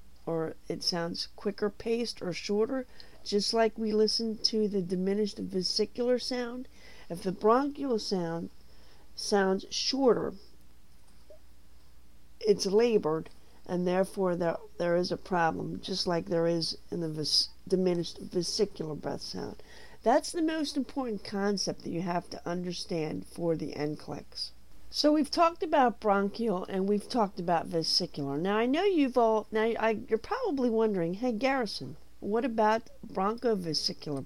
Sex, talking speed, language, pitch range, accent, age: female, 140 wpm, English, 155-220 Hz, American, 50-69